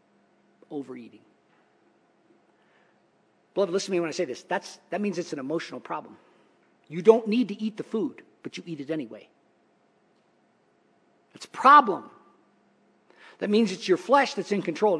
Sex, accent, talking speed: male, American, 155 wpm